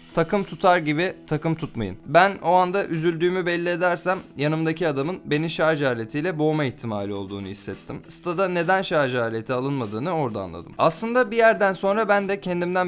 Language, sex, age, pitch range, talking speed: Turkish, male, 20-39, 115-165 Hz, 160 wpm